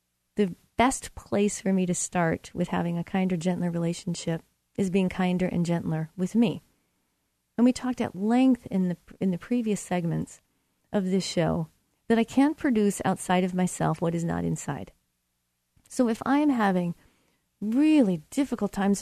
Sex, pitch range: female, 170-220 Hz